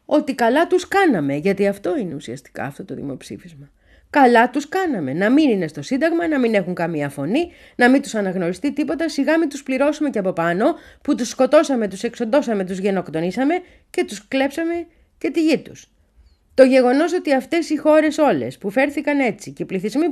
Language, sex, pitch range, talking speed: Greek, female, 150-250 Hz, 190 wpm